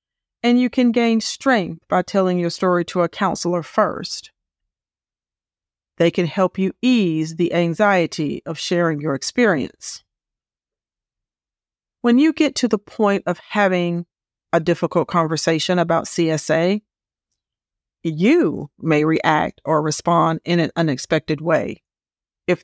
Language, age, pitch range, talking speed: English, 40-59, 165-205 Hz, 125 wpm